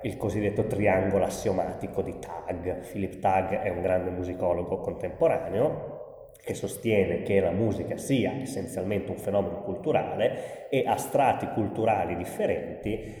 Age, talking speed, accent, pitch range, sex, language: 30-49, 125 wpm, native, 100-120 Hz, male, Italian